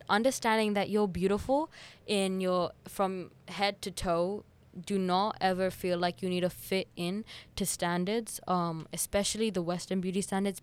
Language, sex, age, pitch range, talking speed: English, female, 10-29, 180-210 Hz, 160 wpm